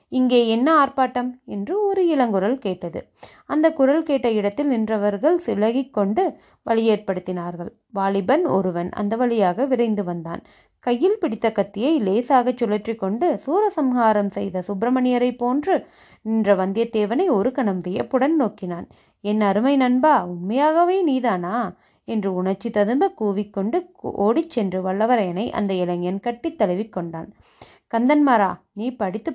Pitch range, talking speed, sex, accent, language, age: 195-260 Hz, 110 wpm, female, native, Tamil, 30-49